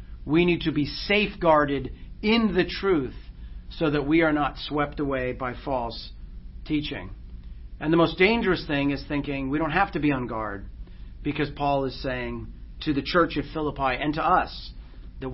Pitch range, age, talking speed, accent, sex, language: 125-190 Hz, 40-59, 175 wpm, American, male, English